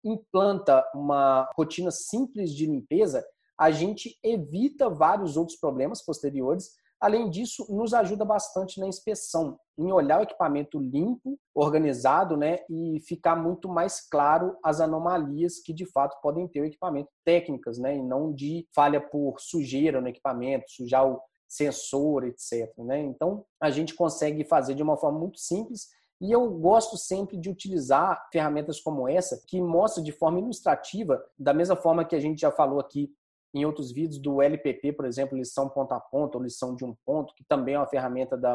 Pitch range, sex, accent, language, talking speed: 145-190 Hz, male, Brazilian, Portuguese, 175 wpm